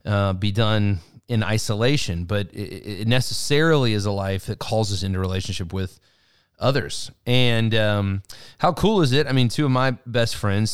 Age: 30-49